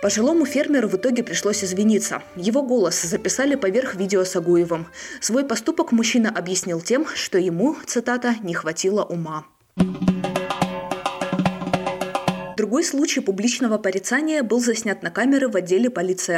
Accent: native